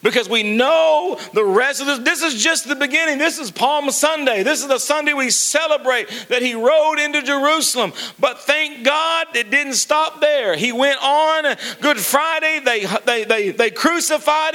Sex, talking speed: male, 180 wpm